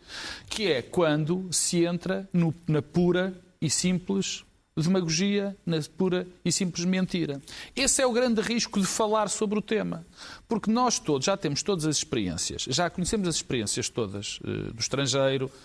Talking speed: 155 wpm